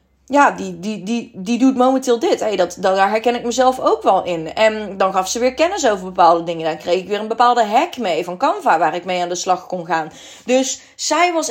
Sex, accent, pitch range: female, Dutch, 195-275 Hz